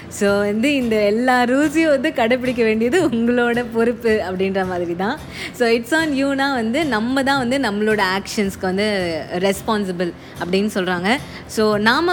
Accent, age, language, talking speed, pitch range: native, 20-39, Tamil, 140 wpm, 205-275 Hz